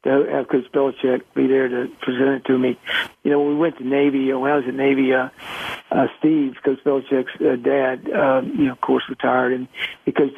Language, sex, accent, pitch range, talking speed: English, male, American, 130-145 Hz, 225 wpm